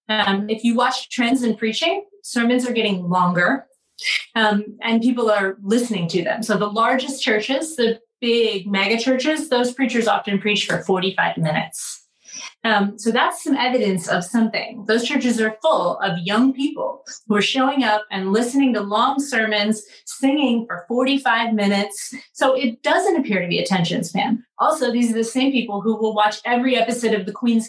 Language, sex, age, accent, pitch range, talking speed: English, female, 30-49, American, 215-265 Hz, 180 wpm